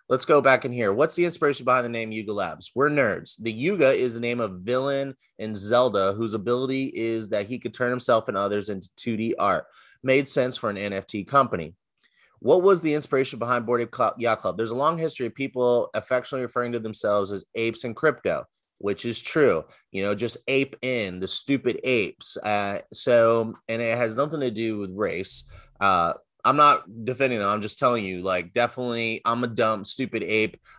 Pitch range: 110-125 Hz